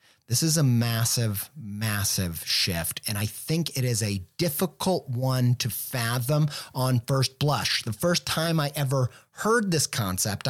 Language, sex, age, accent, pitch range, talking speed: English, male, 30-49, American, 120-155 Hz, 155 wpm